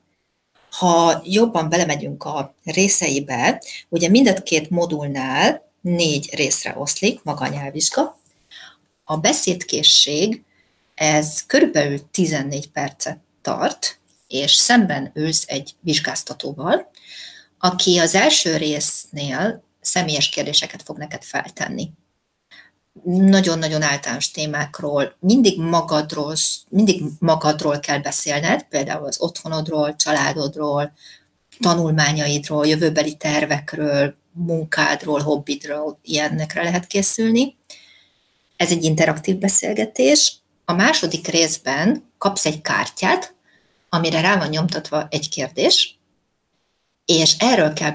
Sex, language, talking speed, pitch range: female, Hungarian, 95 wpm, 150-175 Hz